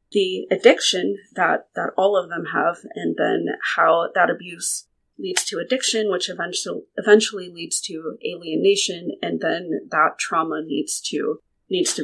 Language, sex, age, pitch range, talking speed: English, female, 30-49, 185-255 Hz, 150 wpm